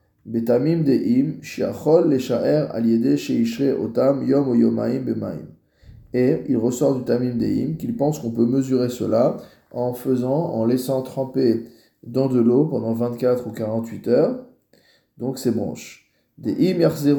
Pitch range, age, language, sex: 115-135 Hz, 20-39, French, male